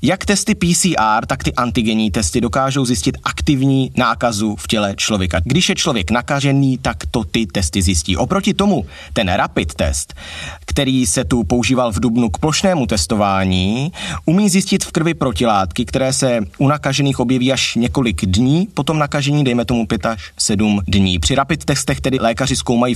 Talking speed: 170 wpm